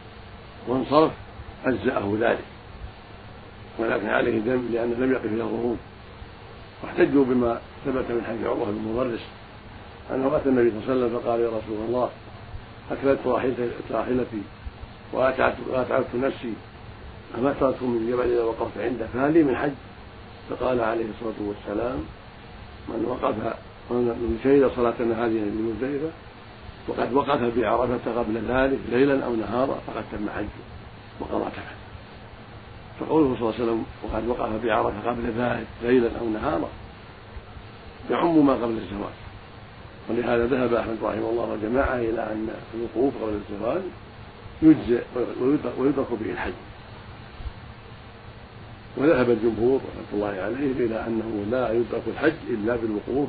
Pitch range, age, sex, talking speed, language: 105-120 Hz, 50-69, male, 125 wpm, Arabic